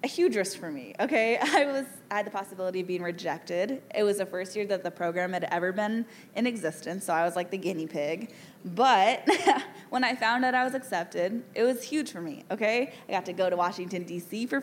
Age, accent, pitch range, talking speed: 10-29, American, 190-255 Hz, 235 wpm